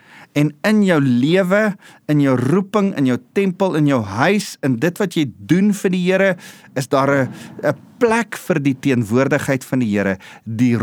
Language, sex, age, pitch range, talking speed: English, male, 40-59, 115-165 Hz, 175 wpm